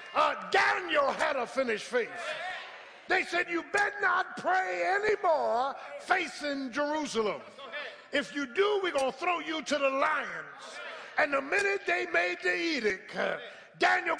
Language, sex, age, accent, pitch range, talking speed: English, male, 50-69, American, 300-365 Hz, 145 wpm